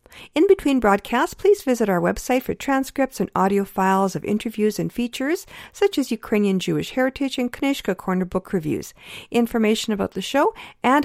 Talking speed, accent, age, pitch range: 170 wpm, American, 50-69, 185-265 Hz